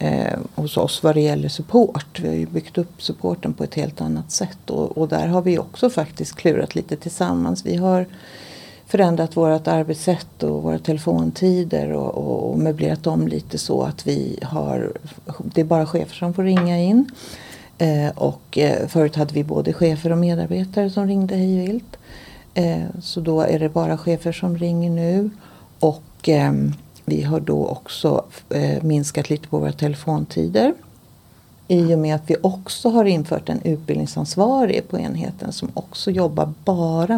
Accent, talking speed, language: native, 170 wpm, Swedish